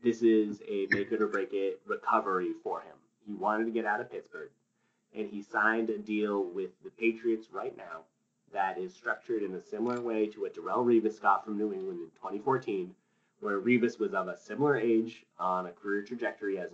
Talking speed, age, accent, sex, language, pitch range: 205 wpm, 30-49, American, male, English, 105-140 Hz